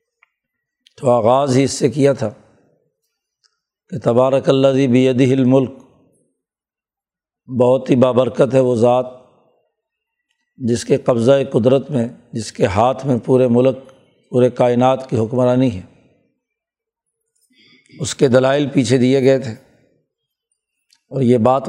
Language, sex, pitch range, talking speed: Urdu, male, 125-145 Hz, 125 wpm